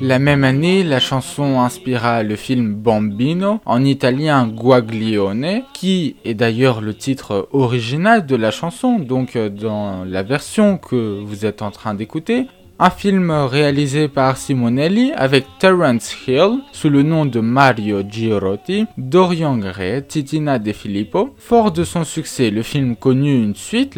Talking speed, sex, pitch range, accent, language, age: 150 wpm, male, 115-165 Hz, French, French, 20-39